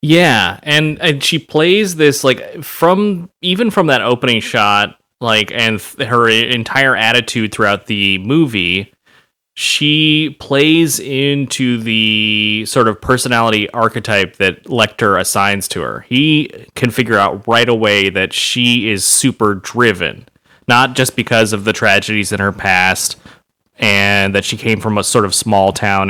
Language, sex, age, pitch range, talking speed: English, male, 30-49, 100-130 Hz, 145 wpm